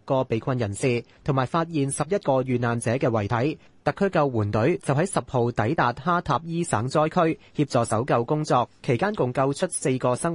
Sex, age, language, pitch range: male, 30-49, Chinese, 115-155 Hz